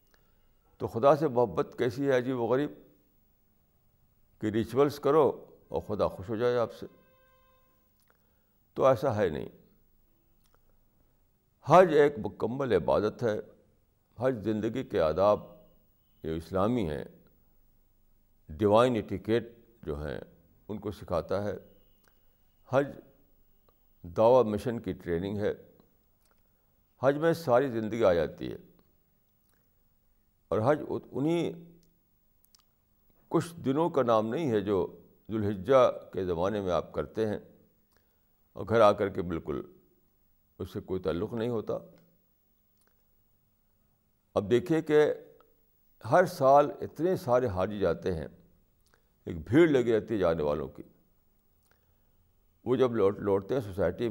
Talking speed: 120 wpm